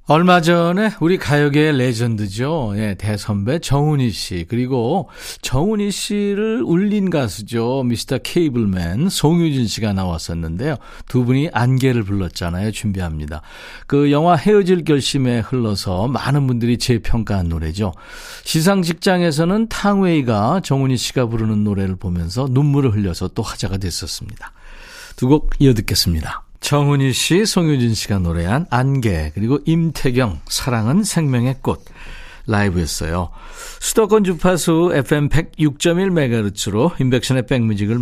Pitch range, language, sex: 105-165 Hz, Korean, male